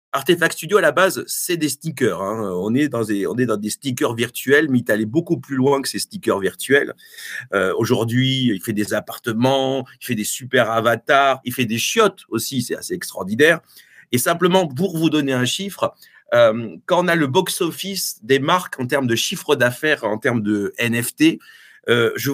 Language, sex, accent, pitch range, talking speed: French, male, French, 125-175 Hz, 190 wpm